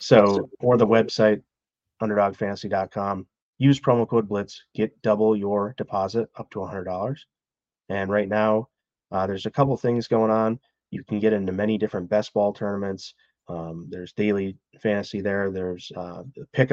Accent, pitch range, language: American, 95-110 Hz, English